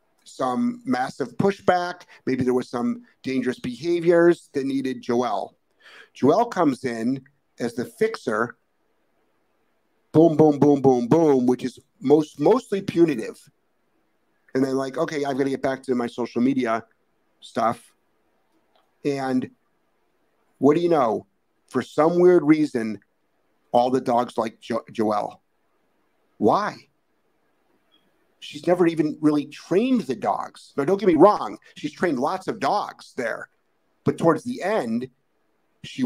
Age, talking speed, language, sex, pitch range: 50-69, 135 wpm, English, male, 125-180 Hz